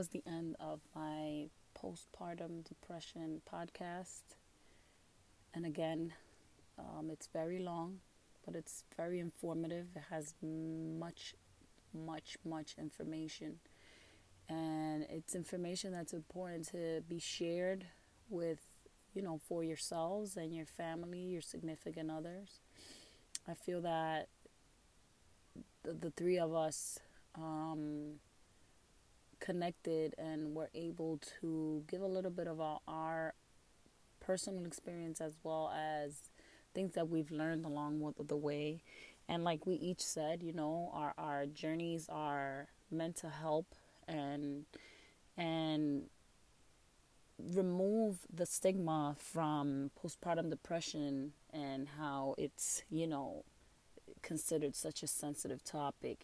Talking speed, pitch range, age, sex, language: 115 wpm, 150-170 Hz, 20-39, female, English